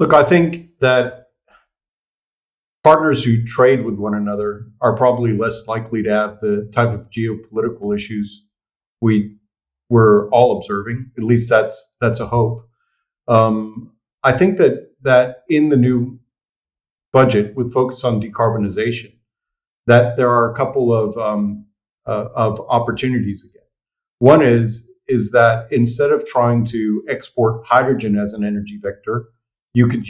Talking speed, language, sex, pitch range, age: 140 wpm, English, male, 105-125 Hz, 40-59